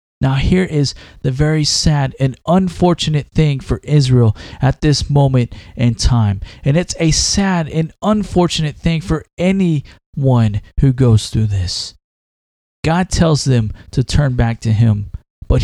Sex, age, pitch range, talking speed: male, 20-39, 125-180 Hz, 145 wpm